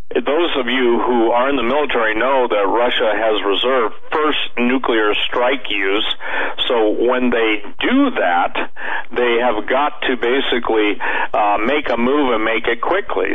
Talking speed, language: 155 wpm, English